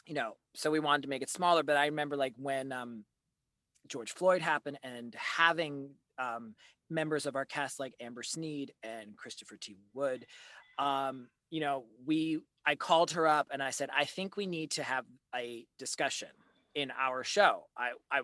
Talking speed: 180 wpm